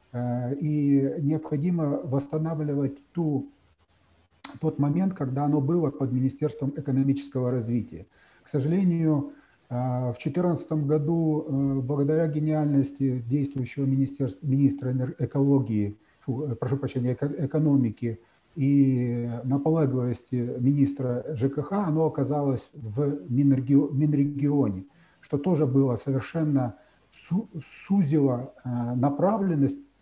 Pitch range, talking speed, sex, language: 130-150 Hz, 85 wpm, male, Ukrainian